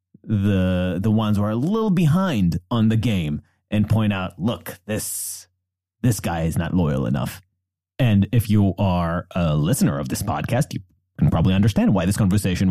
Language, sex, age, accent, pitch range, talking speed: English, male, 30-49, American, 95-115 Hz, 180 wpm